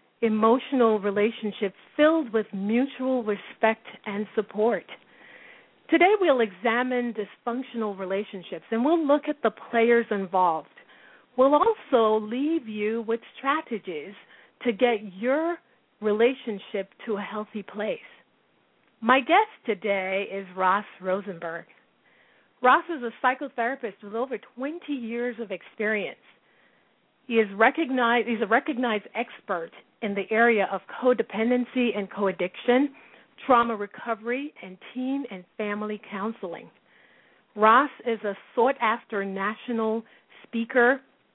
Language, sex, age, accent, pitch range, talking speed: English, female, 40-59, American, 205-250 Hz, 115 wpm